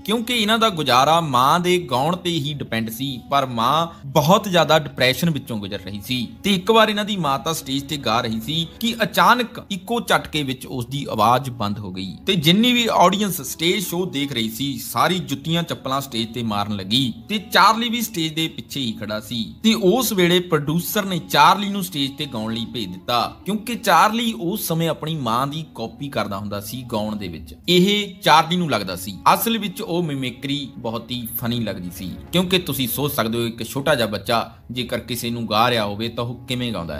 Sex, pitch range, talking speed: male, 115-180 Hz, 120 wpm